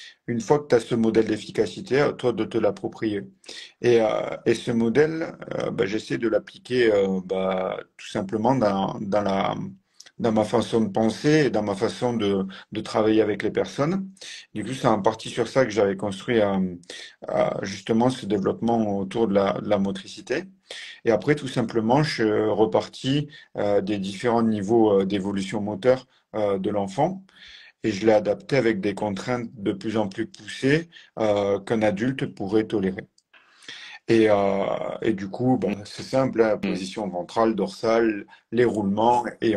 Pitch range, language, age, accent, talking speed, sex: 100-120 Hz, French, 40-59, French, 175 wpm, male